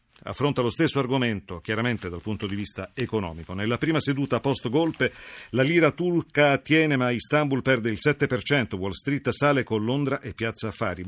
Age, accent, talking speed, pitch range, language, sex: 50-69, native, 170 wpm, 105-140 Hz, Italian, male